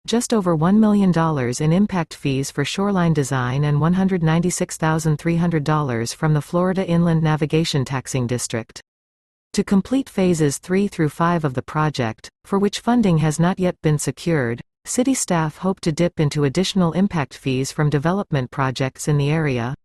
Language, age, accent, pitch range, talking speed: English, 40-59, American, 140-180 Hz, 155 wpm